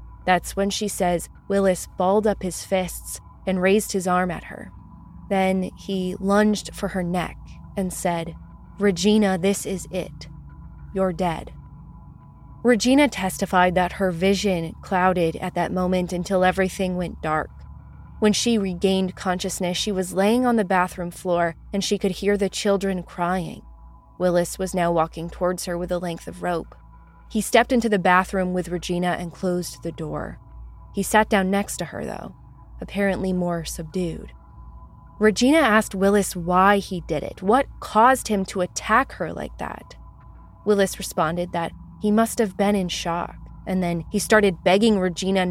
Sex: female